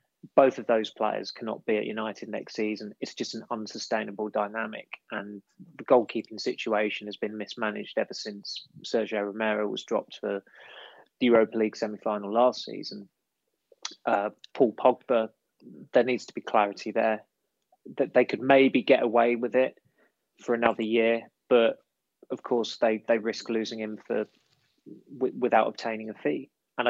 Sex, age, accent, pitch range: male, 20-39, British, 110-125 Hz